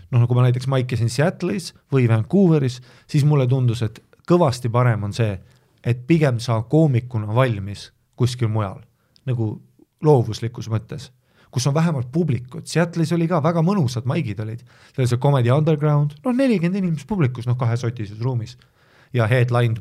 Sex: male